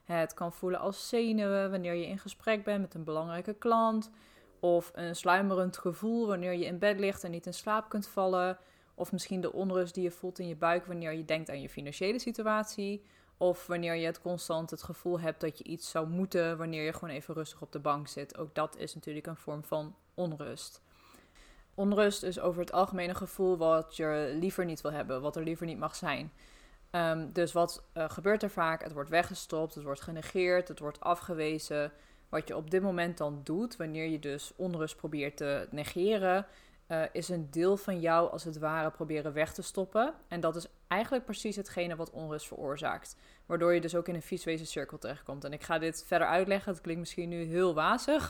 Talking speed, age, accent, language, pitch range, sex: 205 wpm, 20-39, Dutch, Dutch, 160-190 Hz, female